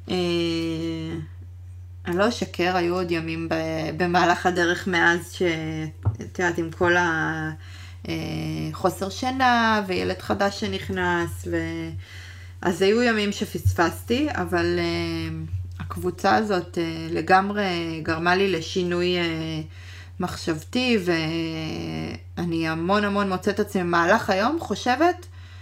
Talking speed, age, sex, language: 90 wpm, 20-39, female, Hebrew